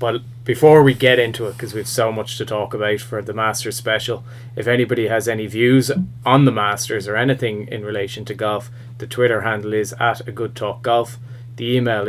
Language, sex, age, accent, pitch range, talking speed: English, male, 20-39, Irish, 110-120 Hz, 215 wpm